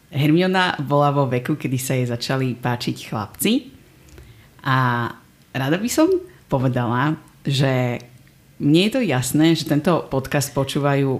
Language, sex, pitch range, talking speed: Slovak, female, 125-145 Hz, 130 wpm